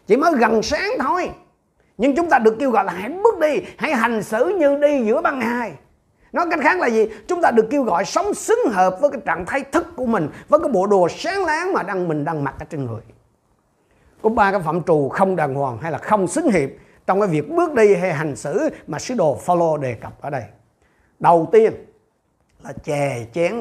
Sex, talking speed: male, 230 wpm